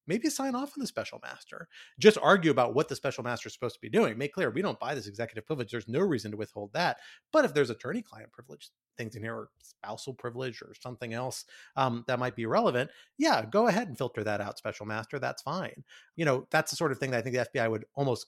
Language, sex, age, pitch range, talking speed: English, male, 30-49, 115-160 Hz, 255 wpm